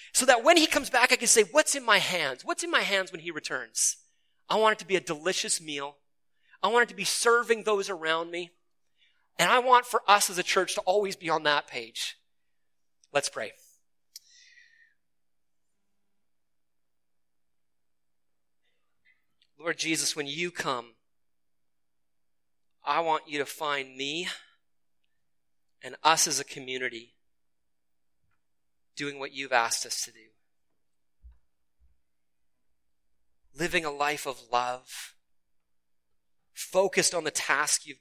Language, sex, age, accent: English, male, 30-49, American